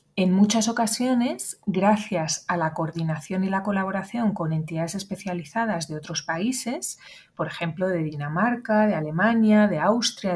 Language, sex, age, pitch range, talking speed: Spanish, female, 30-49, 170-215 Hz, 140 wpm